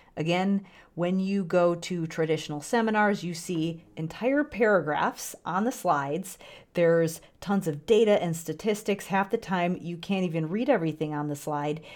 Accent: American